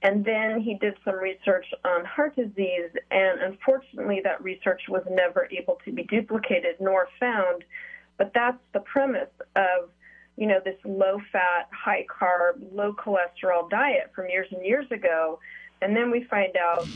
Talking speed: 150 wpm